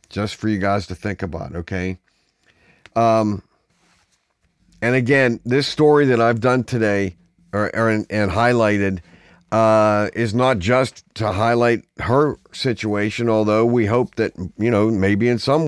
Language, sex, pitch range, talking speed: English, male, 105-125 Hz, 145 wpm